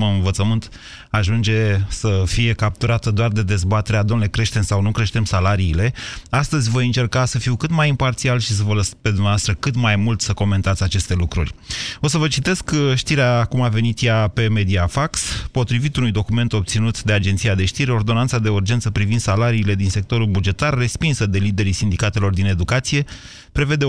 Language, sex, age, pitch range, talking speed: Romanian, male, 30-49, 100-125 Hz, 175 wpm